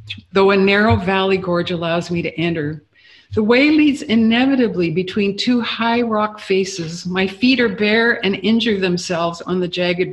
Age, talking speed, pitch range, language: 50-69, 165 wpm, 175-220 Hz, English